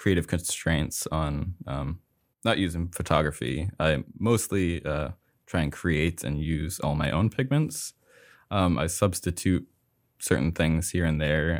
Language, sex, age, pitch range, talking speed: English, male, 20-39, 75-95 Hz, 140 wpm